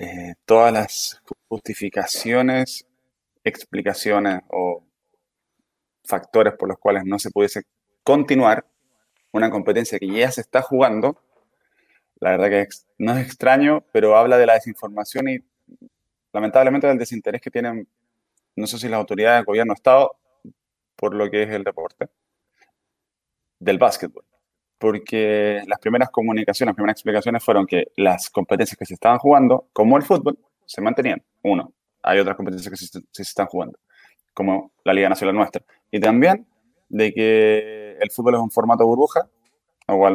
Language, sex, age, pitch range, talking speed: Spanish, male, 20-39, 100-130 Hz, 150 wpm